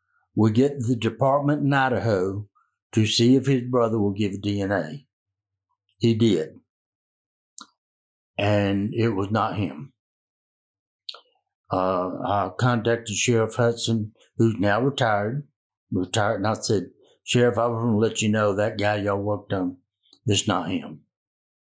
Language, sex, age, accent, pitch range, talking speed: English, male, 60-79, American, 100-125 Hz, 130 wpm